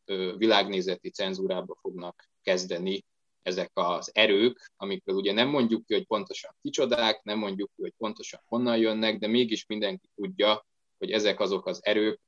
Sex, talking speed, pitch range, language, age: male, 150 wpm, 95-125 Hz, Hungarian, 20-39